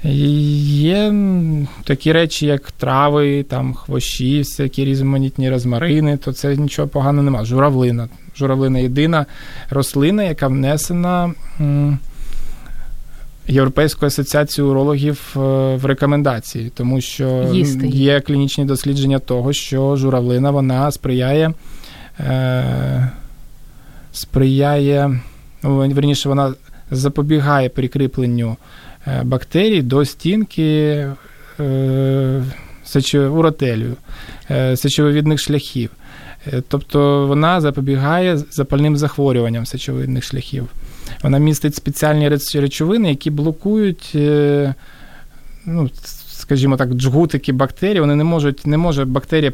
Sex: male